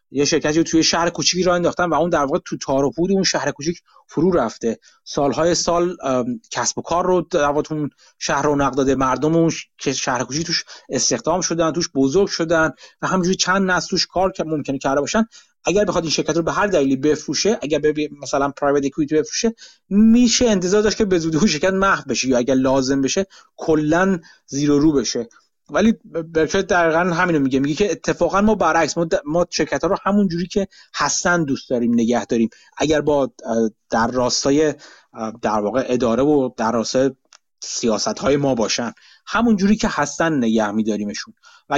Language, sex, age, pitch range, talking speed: Persian, male, 30-49, 135-175 Hz, 180 wpm